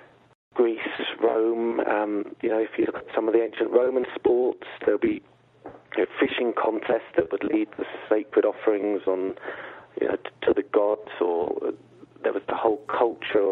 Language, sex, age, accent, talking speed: English, male, 40-59, British, 180 wpm